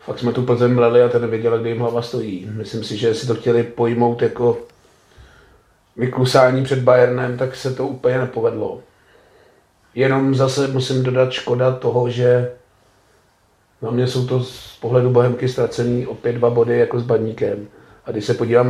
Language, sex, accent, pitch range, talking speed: Czech, male, native, 120-135 Hz, 165 wpm